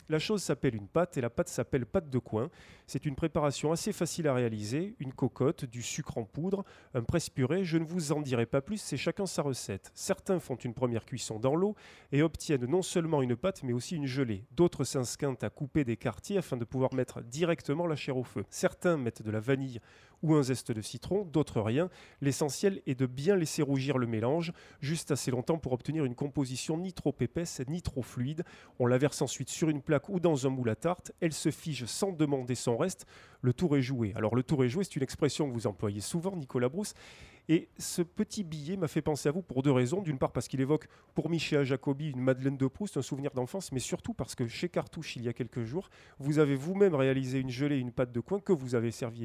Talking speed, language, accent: 235 wpm, French, French